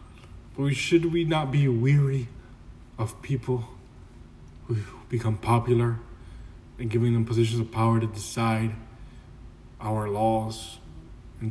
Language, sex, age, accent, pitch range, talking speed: English, male, 20-39, American, 115-130 Hz, 110 wpm